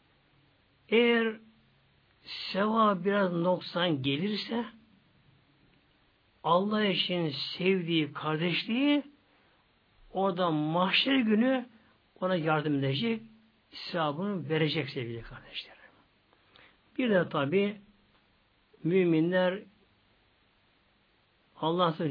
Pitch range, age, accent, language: 135-190 Hz, 60-79, native, Turkish